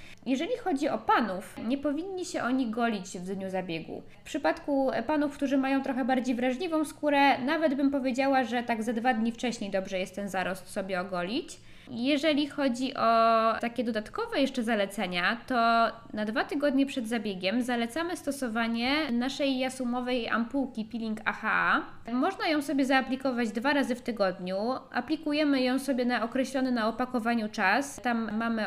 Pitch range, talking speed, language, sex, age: 215-275 Hz, 155 wpm, Polish, female, 20-39